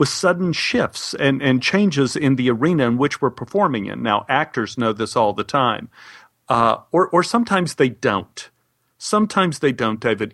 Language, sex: English, male